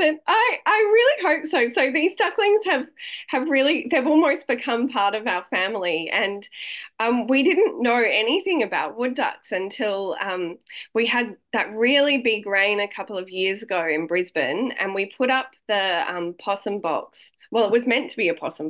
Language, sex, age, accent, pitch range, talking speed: English, female, 20-39, Australian, 190-265 Hz, 185 wpm